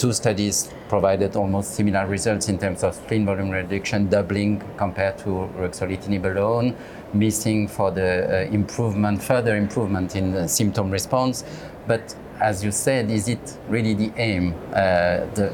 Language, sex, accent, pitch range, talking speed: English, male, French, 95-110 Hz, 150 wpm